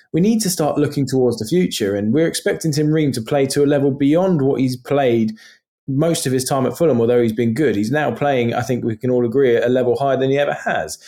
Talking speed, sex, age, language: 265 wpm, male, 20-39, English